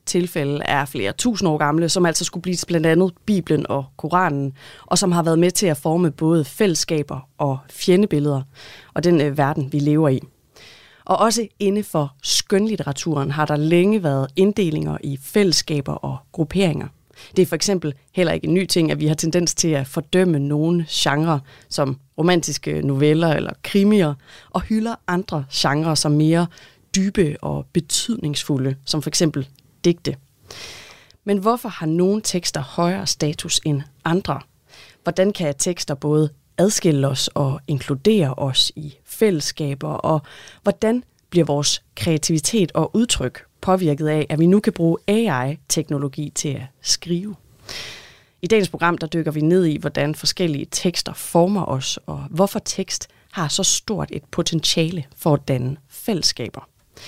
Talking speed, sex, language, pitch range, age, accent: 155 wpm, female, Danish, 145-180 Hz, 30-49, native